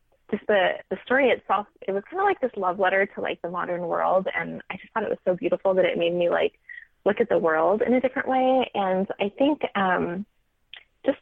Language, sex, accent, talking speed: English, female, American, 235 wpm